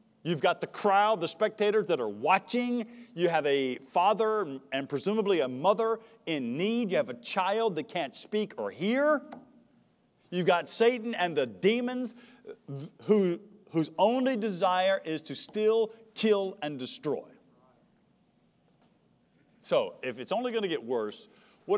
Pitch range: 140-200 Hz